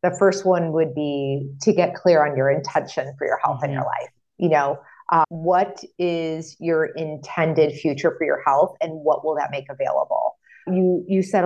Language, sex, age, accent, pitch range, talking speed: English, female, 30-49, American, 155-200 Hz, 195 wpm